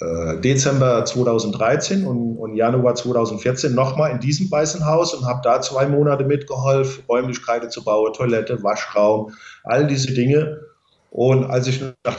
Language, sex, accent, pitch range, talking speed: German, male, German, 115-145 Hz, 135 wpm